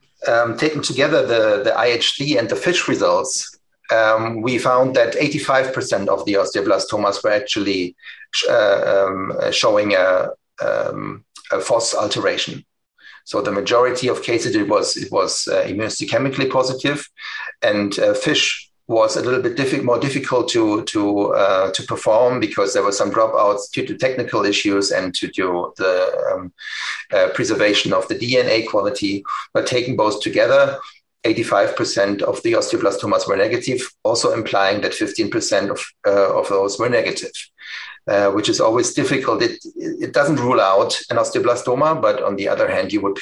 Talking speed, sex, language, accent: 160 wpm, male, English, German